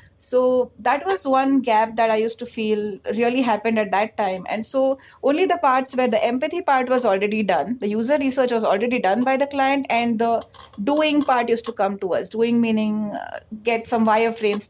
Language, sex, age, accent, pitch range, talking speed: English, female, 30-49, Indian, 210-250 Hz, 210 wpm